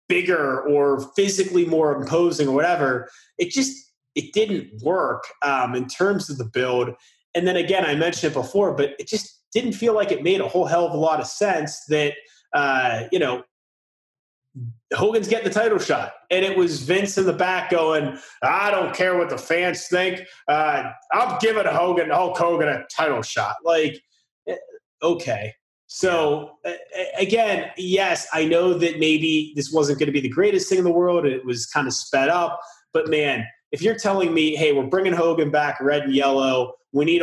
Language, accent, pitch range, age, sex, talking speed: English, American, 145-205 Hz, 30-49, male, 190 wpm